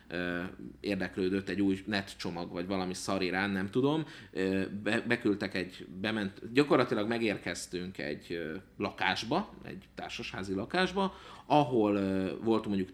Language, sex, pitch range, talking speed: Hungarian, male, 95-120 Hz, 115 wpm